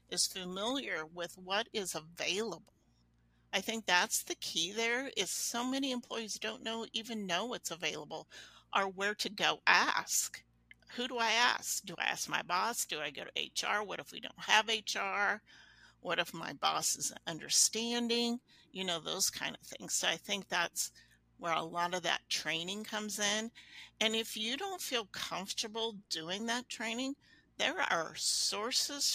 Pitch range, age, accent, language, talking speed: 180-230 Hz, 50-69, American, English, 170 wpm